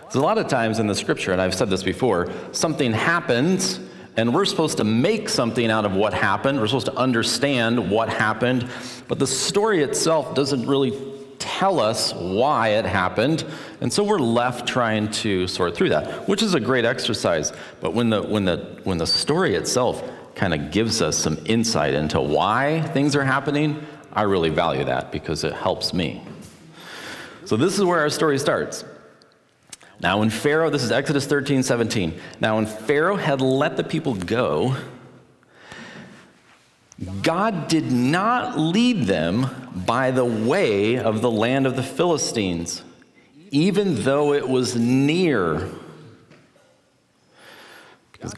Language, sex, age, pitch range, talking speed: English, male, 40-59, 110-145 Hz, 155 wpm